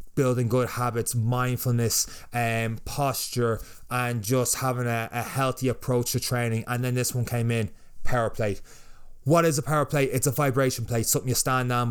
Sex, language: male, English